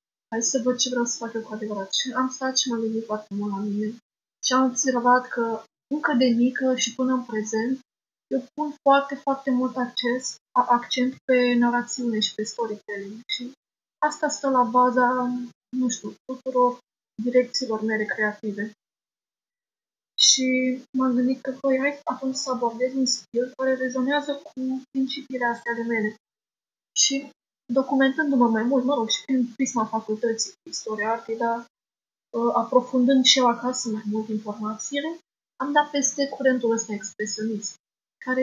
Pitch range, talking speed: 230-265 Hz, 155 wpm